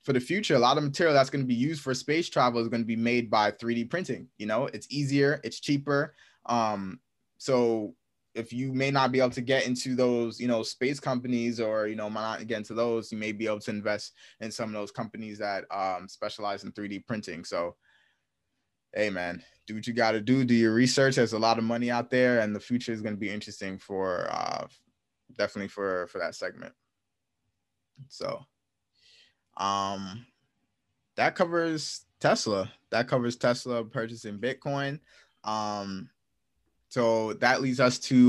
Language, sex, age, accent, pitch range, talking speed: English, male, 20-39, American, 110-140 Hz, 190 wpm